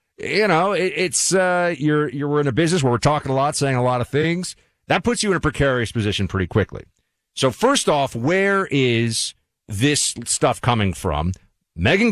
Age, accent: 40-59, American